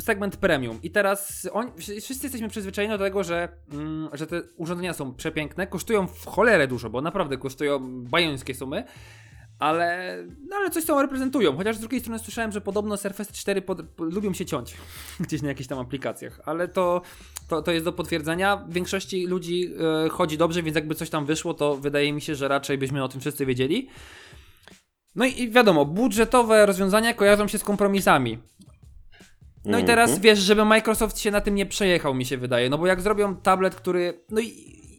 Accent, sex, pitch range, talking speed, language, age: native, male, 155-210 Hz, 185 wpm, Polish, 20-39